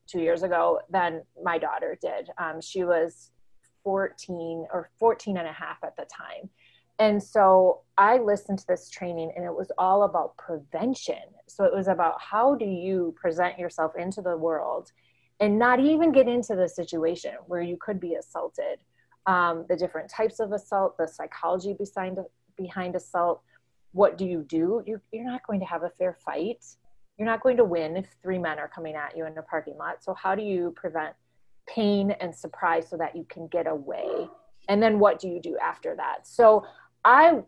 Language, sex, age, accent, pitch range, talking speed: English, female, 20-39, American, 165-200 Hz, 190 wpm